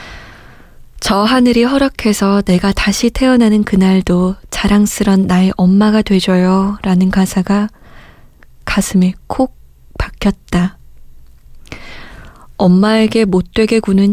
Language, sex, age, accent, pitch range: Korean, female, 20-39, native, 180-210 Hz